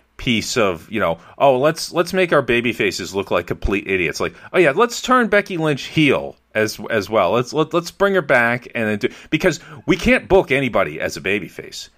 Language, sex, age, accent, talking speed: English, male, 40-59, American, 220 wpm